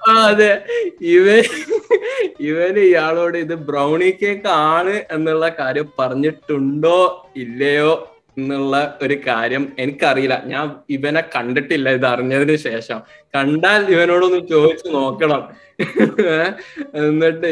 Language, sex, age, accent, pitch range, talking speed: Malayalam, male, 20-39, native, 135-170 Hz, 95 wpm